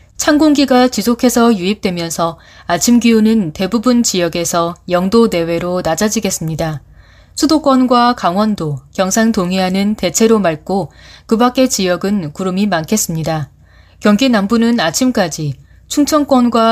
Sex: female